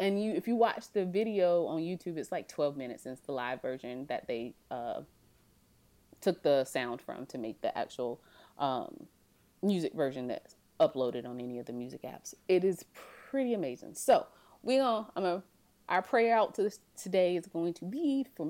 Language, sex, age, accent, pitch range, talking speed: English, female, 30-49, American, 160-220 Hz, 190 wpm